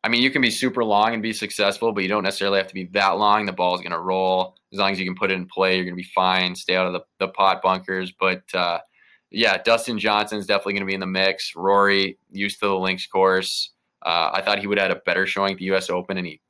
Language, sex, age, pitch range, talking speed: English, male, 20-39, 95-110 Hz, 295 wpm